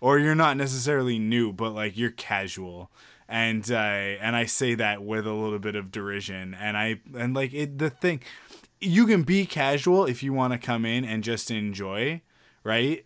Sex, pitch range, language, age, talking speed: male, 105-130 Hz, English, 20-39, 195 wpm